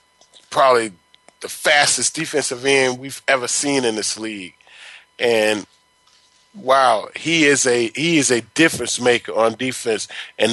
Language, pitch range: English, 125-160 Hz